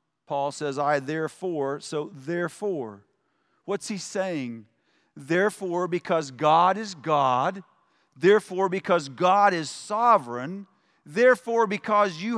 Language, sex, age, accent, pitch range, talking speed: English, male, 40-59, American, 145-225 Hz, 105 wpm